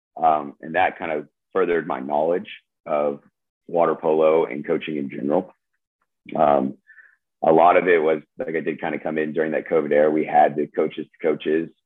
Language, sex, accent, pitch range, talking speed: English, male, American, 75-80 Hz, 190 wpm